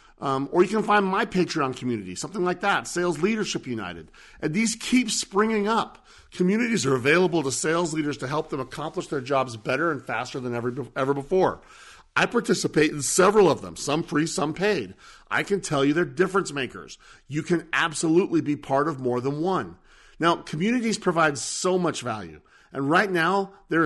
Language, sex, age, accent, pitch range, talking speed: English, male, 40-59, American, 140-195 Hz, 185 wpm